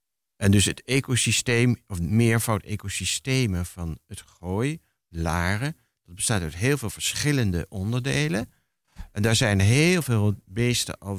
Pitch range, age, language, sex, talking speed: 95-125 Hz, 60-79, Dutch, male, 135 wpm